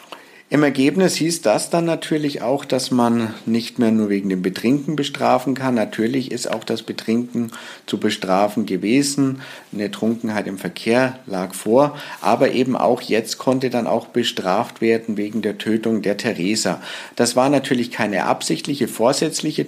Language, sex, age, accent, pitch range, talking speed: German, male, 50-69, German, 110-135 Hz, 155 wpm